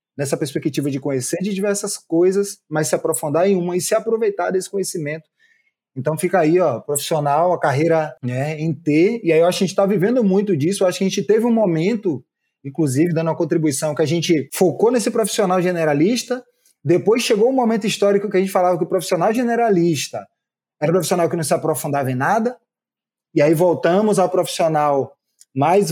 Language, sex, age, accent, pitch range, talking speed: Portuguese, male, 20-39, Brazilian, 160-200 Hz, 195 wpm